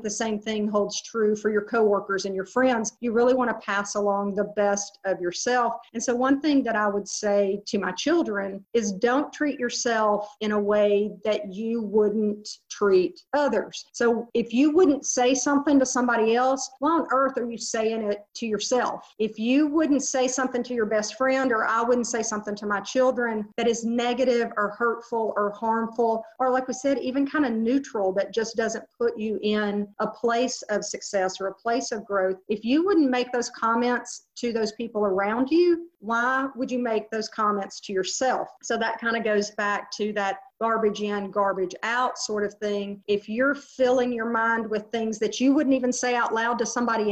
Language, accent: English, American